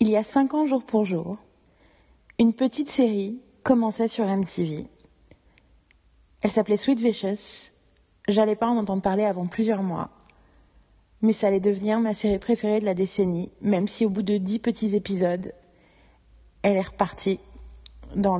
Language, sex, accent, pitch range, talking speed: French, female, French, 200-235 Hz, 155 wpm